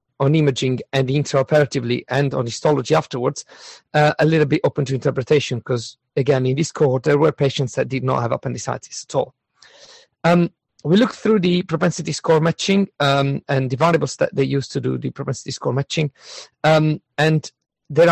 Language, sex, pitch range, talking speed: English, male, 130-160 Hz, 180 wpm